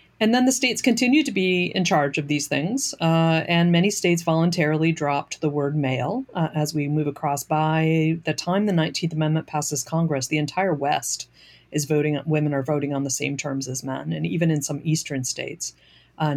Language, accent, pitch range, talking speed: English, American, 140-170 Hz, 200 wpm